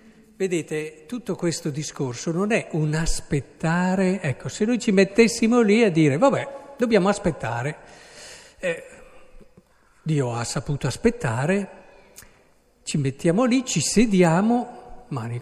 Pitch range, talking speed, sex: 145-200 Hz, 115 wpm, male